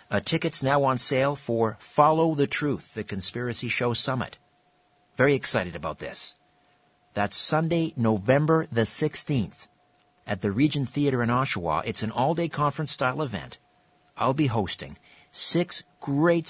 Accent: American